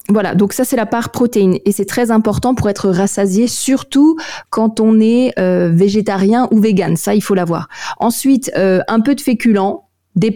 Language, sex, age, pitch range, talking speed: French, female, 20-39, 195-230 Hz, 190 wpm